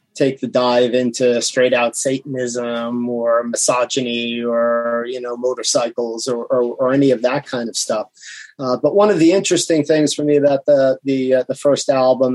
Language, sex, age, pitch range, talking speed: English, male, 30-49, 125-140 Hz, 185 wpm